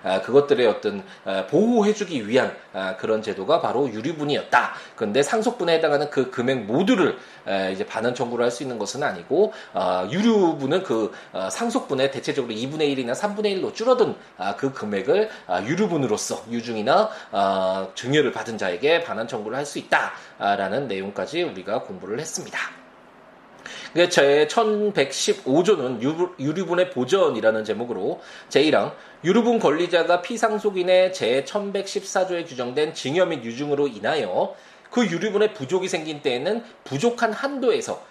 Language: Korean